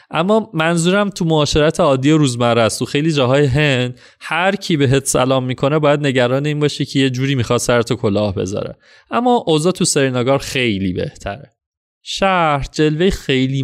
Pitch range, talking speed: 115-155 Hz, 165 wpm